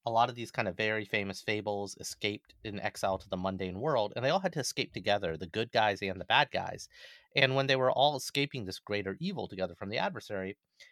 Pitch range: 100-140 Hz